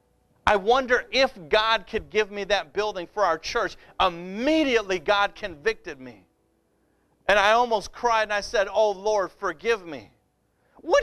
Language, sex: English, male